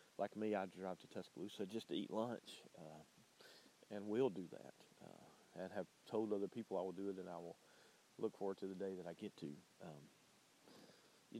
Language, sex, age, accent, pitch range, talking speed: English, male, 40-59, American, 95-110 Hz, 205 wpm